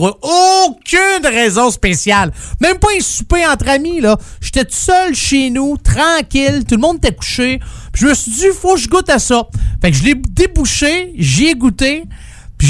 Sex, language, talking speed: male, French, 195 wpm